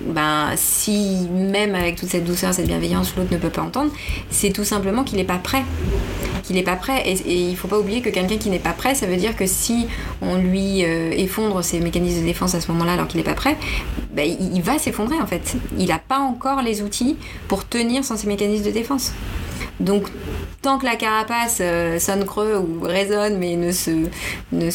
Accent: French